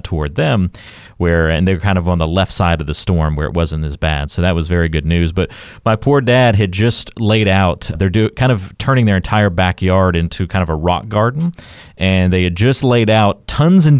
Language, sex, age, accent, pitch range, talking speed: English, male, 30-49, American, 90-115 Hz, 235 wpm